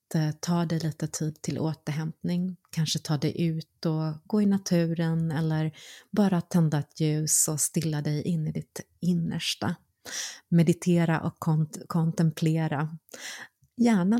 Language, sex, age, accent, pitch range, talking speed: Swedish, female, 30-49, native, 155-185 Hz, 130 wpm